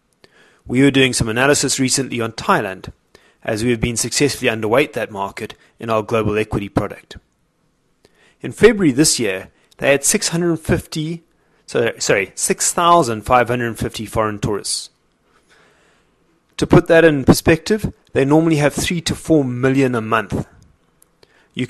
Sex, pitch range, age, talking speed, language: male, 110-140 Hz, 30-49, 130 wpm, English